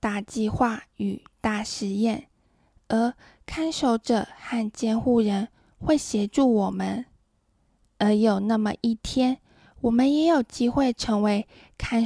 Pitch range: 210-245 Hz